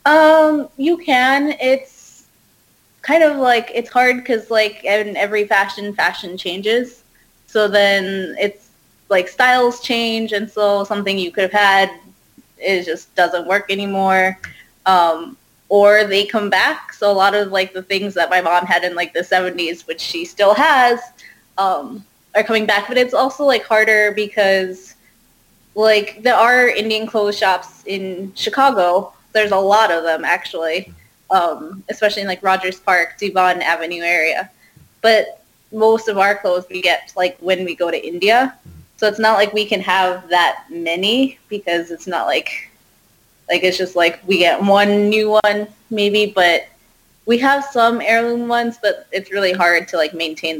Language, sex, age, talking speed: English, female, 20-39, 165 wpm